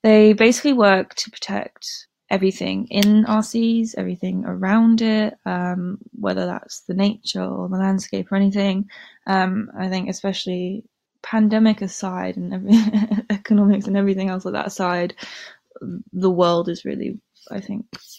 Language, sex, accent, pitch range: English, female, British, 180-215 Hz